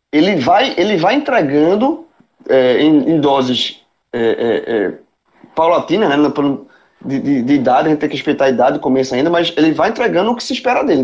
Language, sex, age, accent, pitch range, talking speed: Portuguese, male, 20-39, Brazilian, 150-220 Hz, 190 wpm